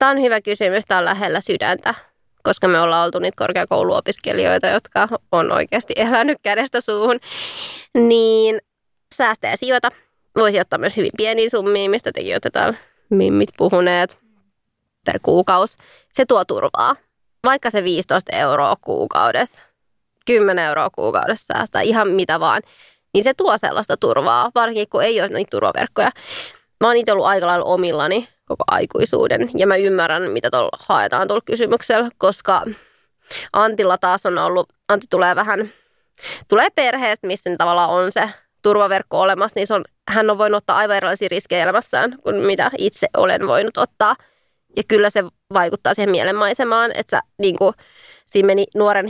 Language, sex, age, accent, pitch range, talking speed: Finnish, female, 20-39, native, 190-230 Hz, 150 wpm